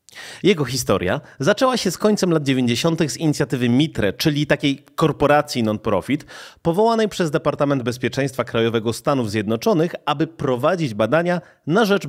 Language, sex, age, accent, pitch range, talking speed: Polish, male, 30-49, native, 115-180 Hz, 135 wpm